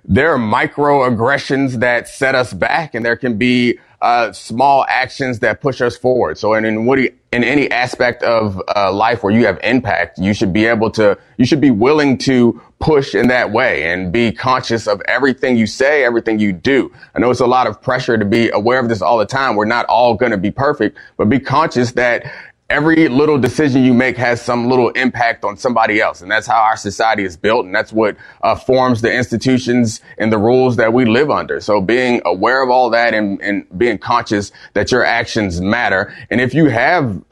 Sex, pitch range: male, 110-130 Hz